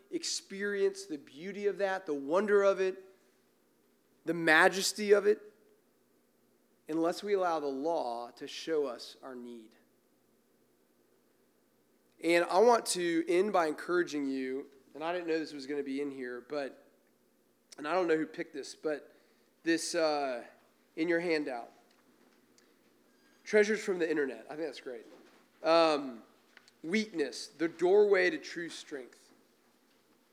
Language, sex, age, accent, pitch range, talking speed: English, male, 30-49, American, 145-195 Hz, 140 wpm